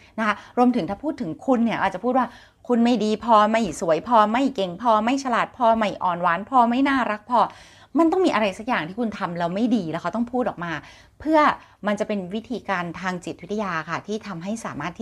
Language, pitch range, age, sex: Thai, 195-260 Hz, 30-49, female